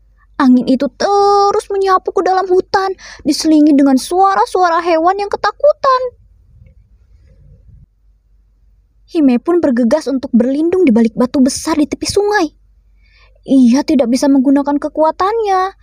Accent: native